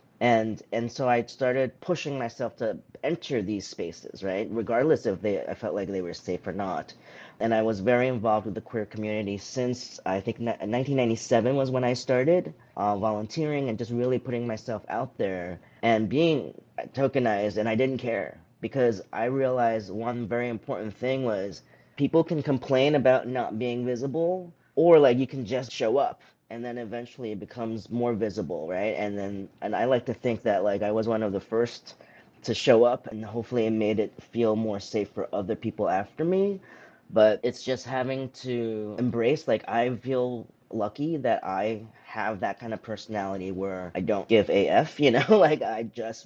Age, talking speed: 30-49, 185 wpm